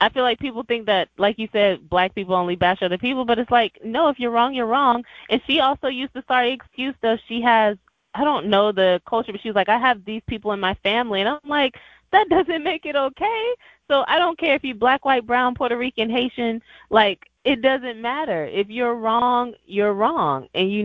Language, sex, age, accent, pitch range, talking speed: English, female, 20-39, American, 200-265 Hz, 235 wpm